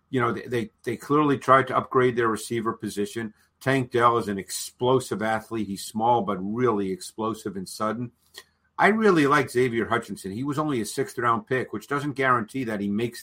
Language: English